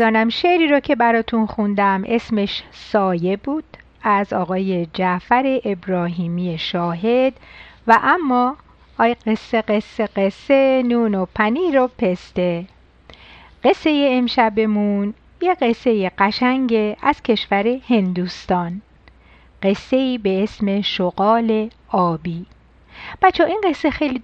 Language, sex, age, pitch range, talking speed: Persian, female, 50-69, 195-260 Hz, 105 wpm